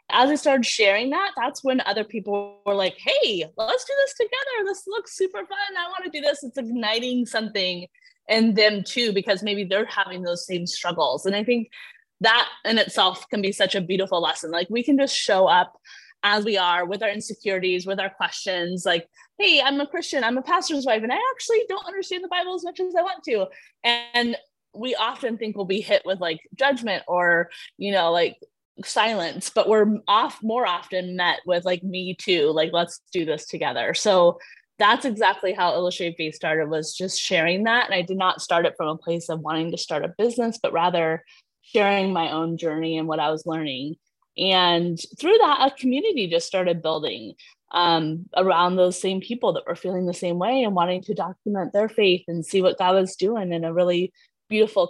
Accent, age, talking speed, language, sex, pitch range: American, 20-39, 205 wpm, English, female, 175-250 Hz